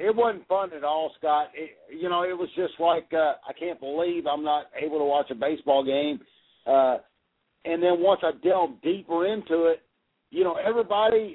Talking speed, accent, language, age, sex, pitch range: 195 wpm, American, English, 50-69, male, 155-215 Hz